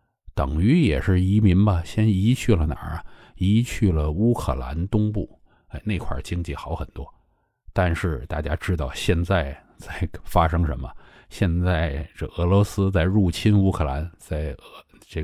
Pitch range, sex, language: 80-100 Hz, male, Chinese